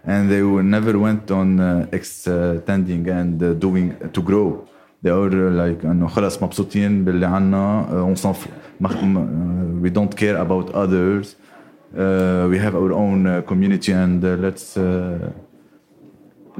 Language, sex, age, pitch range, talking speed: English, male, 30-49, 85-100 Hz, 125 wpm